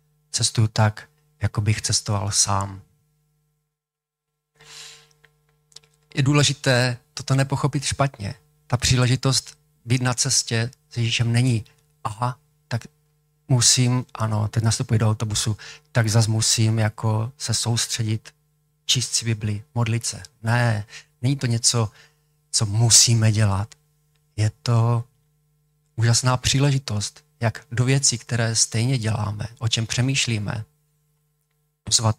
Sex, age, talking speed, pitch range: male, 40-59, 110 wpm, 110-150 Hz